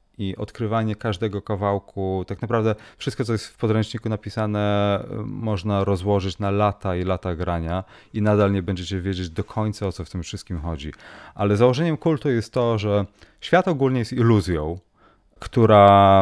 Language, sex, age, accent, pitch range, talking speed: Polish, male, 30-49, native, 95-110 Hz, 160 wpm